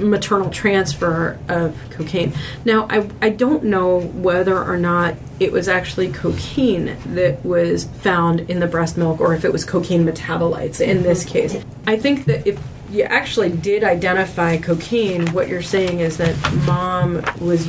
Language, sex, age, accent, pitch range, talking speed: English, female, 30-49, American, 165-190 Hz, 165 wpm